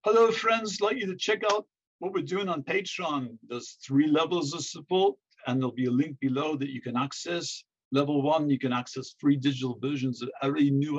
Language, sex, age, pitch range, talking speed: English, male, 50-69, 125-145 Hz, 215 wpm